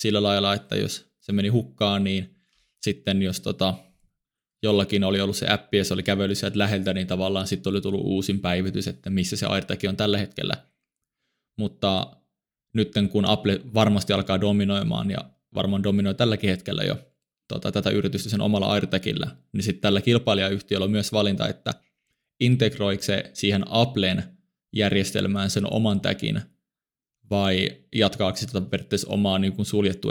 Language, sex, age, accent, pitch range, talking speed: Finnish, male, 20-39, native, 100-110 Hz, 155 wpm